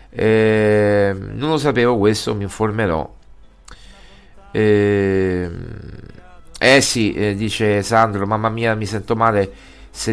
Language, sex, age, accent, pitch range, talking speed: Italian, male, 50-69, native, 105-130 Hz, 115 wpm